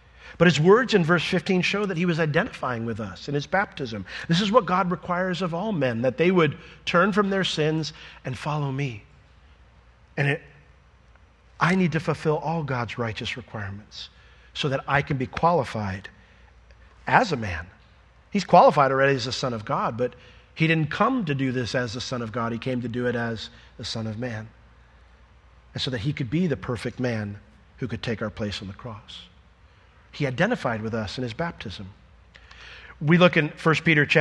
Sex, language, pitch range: male, English, 115-165 Hz